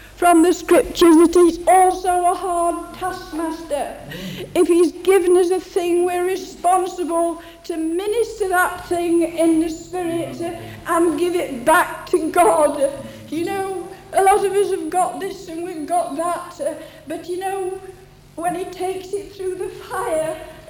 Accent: British